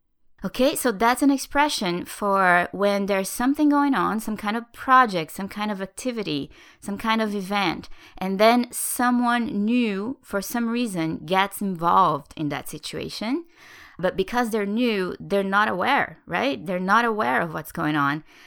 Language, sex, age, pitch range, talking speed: English, female, 20-39, 160-220 Hz, 160 wpm